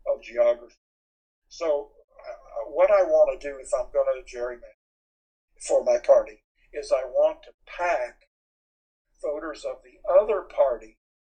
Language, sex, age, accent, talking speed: English, male, 60-79, American, 145 wpm